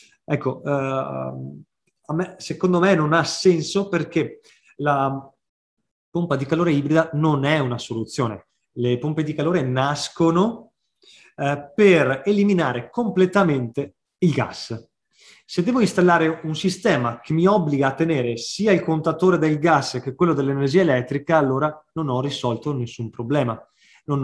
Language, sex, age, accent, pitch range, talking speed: Italian, male, 20-39, native, 130-165 Hz, 130 wpm